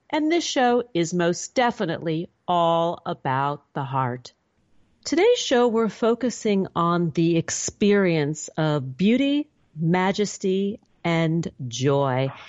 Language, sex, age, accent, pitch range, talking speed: English, female, 40-59, American, 165-215 Hz, 105 wpm